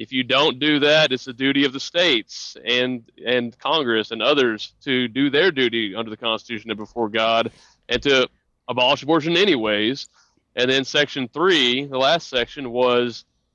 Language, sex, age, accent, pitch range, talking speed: English, male, 30-49, American, 115-130 Hz, 175 wpm